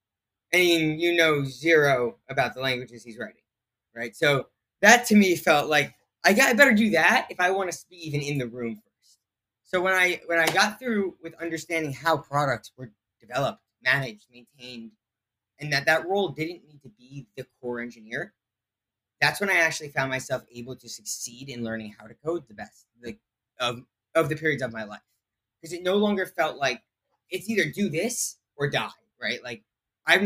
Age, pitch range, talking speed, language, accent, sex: 20-39, 120-175 Hz, 195 wpm, English, American, male